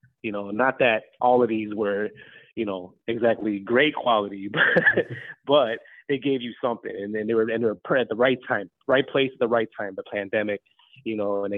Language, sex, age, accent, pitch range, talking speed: English, male, 30-49, American, 105-130 Hz, 210 wpm